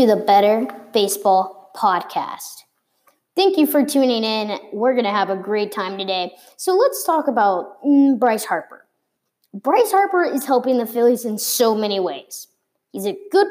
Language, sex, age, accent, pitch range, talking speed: English, female, 20-39, American, 210-290 Hz, 160 wpm